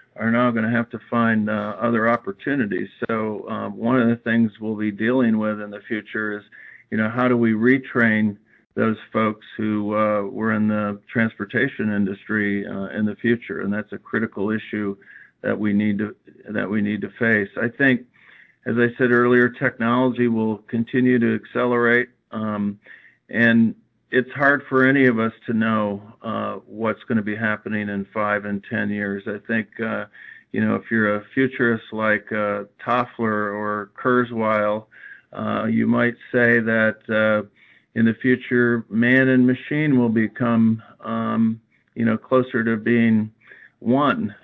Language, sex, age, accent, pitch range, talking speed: English, male, 50-69, American, 105-120 Hz, 165 wpm